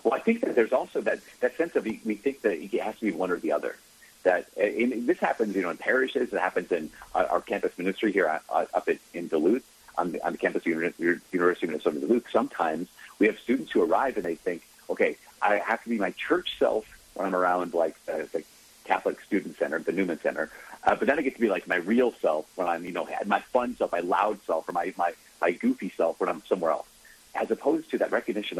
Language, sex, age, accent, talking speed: English, male, 40-59, American, 240 wpm